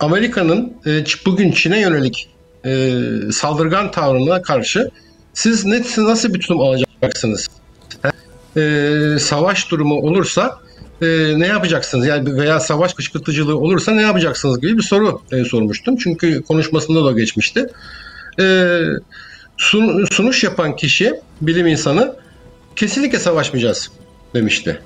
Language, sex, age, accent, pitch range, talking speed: Turkish, male, 60-79, native, 145-200 Hz, 105 wpm